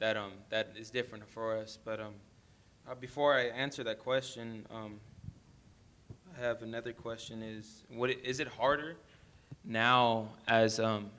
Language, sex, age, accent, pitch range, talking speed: English, male, 20-39, American, 110-125 Hz, 155 wpm